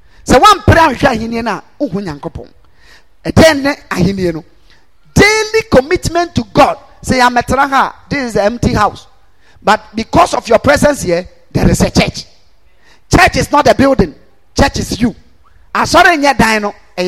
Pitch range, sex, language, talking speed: 190-310 Hz, male, English, 145 wpm